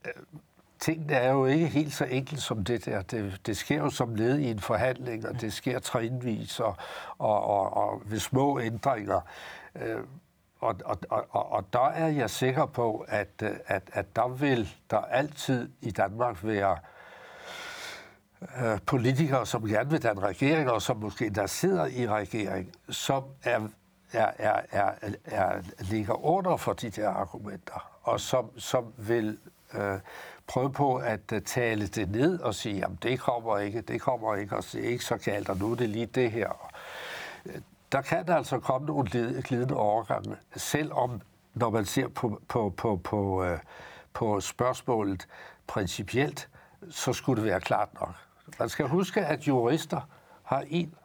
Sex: male